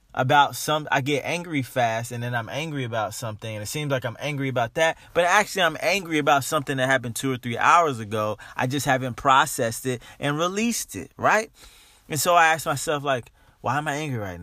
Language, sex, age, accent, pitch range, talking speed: English, male, 20-39, American, 115-150 Hz, 220 wpm